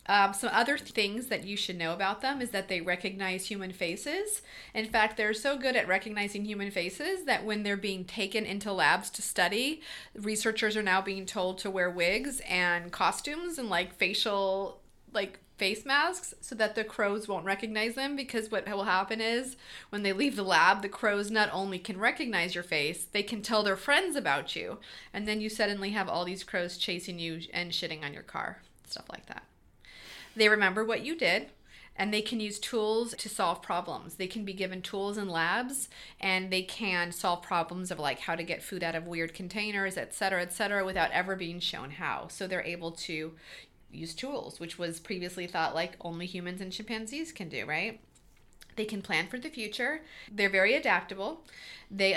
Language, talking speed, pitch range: English, 200 wpm, 180-220 Hz